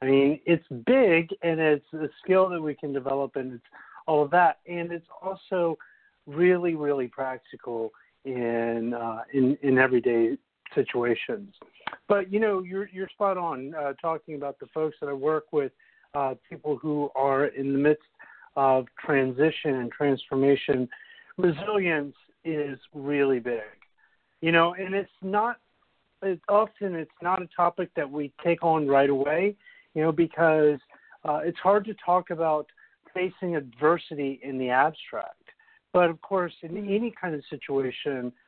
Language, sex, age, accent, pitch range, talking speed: English, male, 50-69, American, 135-175 Hz, 155 wpm